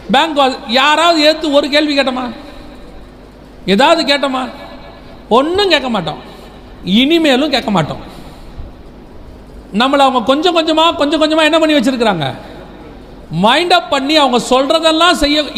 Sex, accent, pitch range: male, native, 245-315 Hz